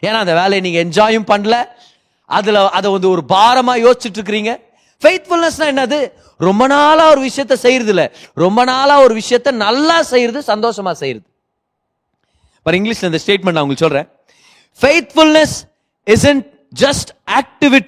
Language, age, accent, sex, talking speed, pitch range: Tamil, 30-49, native, male, 40 wpm, 210-300 Hz